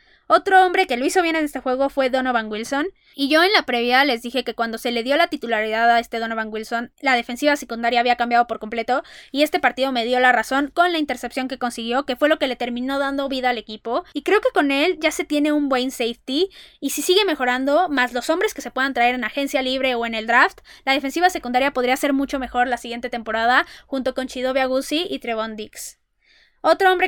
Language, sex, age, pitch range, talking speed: Spanish, female, 20-39, 245-295 Hz, 235 wpm